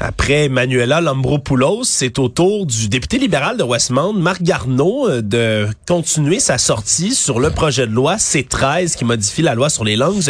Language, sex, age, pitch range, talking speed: French, male, 30-49, 125-175 Hz, 175 wpm